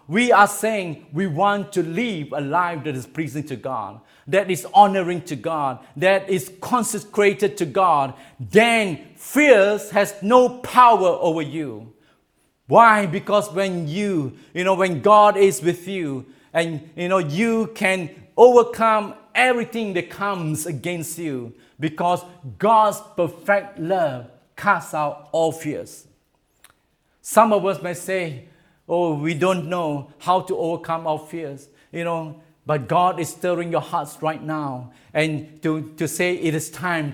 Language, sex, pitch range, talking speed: English, male, 155-195 Hz, 150 wpm